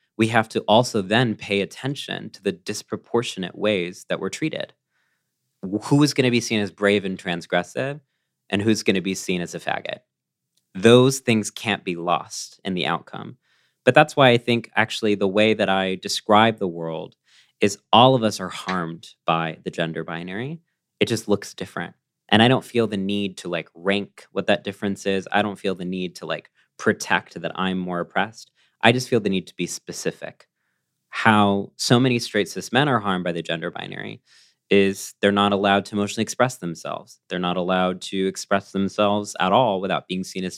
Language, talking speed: English, 195 wpm